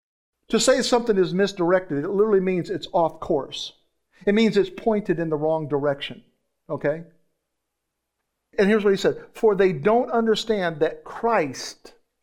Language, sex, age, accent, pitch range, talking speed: English, male, 50-69, American, 155-205 Hz, 150 wpm